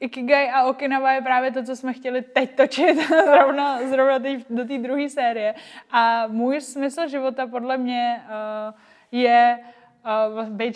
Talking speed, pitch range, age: 155 wpm, 220-250 Hz, 20-39